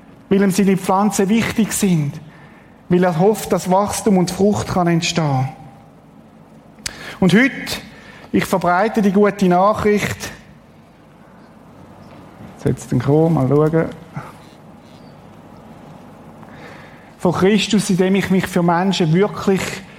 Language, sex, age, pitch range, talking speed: German, male, 50-69, 195-235 Hz, 105 wpm